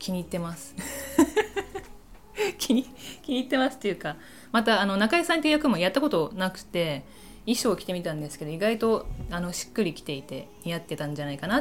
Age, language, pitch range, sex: 20-39, Japanese, 155-205 Hz, female